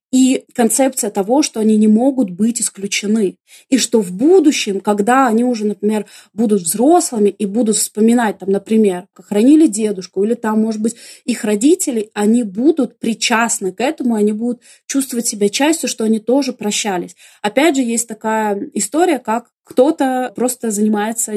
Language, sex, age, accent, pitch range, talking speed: Russian, female, 20-39, native, 210-255 Hz, 150 wpm